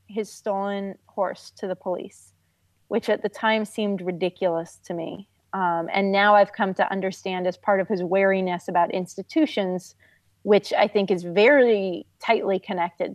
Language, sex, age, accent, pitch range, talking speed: English, female, 30-49, American, 180-225 Hz, 160 wpm